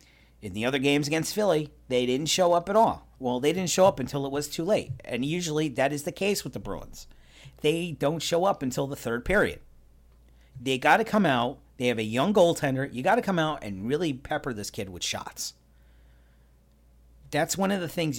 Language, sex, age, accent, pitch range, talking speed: English, male, 40-59, American, 105-160 Hz, 220 wpm